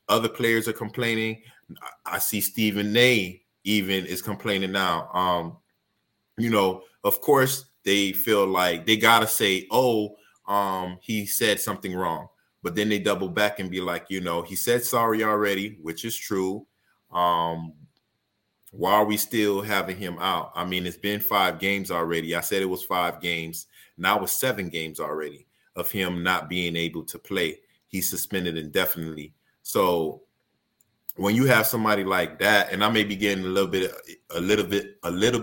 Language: English